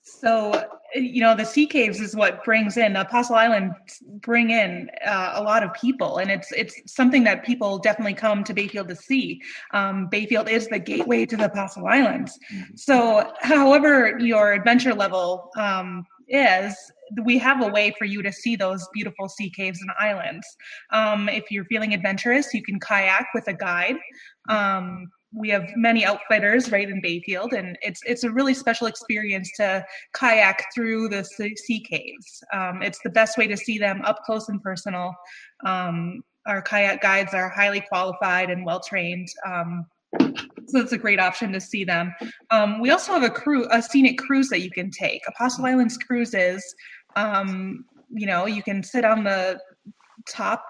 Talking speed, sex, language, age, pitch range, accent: 175 wpm, female, English, 20-39, 195-235 Hz, American